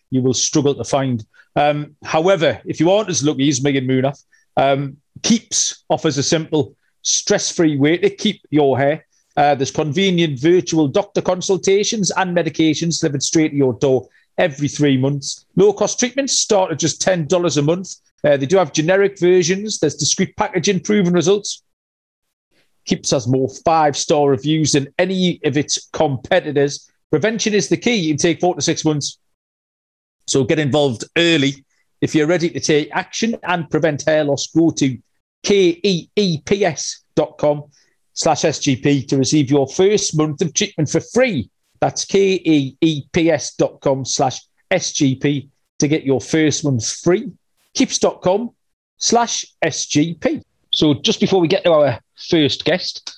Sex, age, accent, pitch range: male, 40-59, British, 140-185 Hz